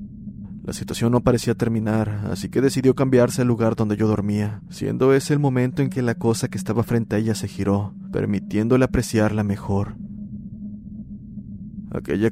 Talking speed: 160 wpm